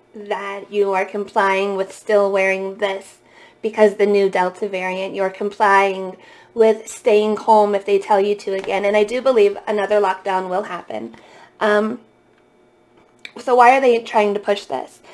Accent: American